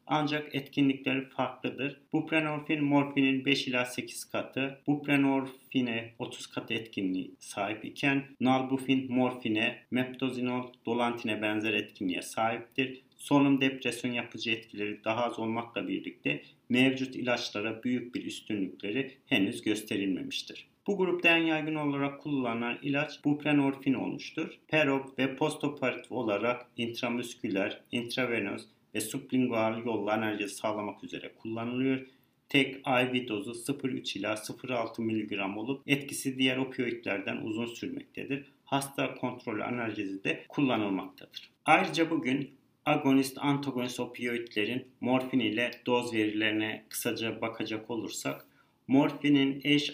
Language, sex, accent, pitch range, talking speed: Turkish, male, native, 115-140 Hz, 110 wpm